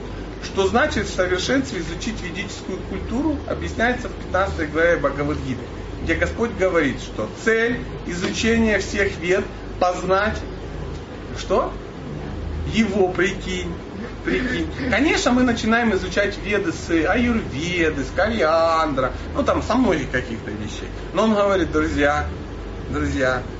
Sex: male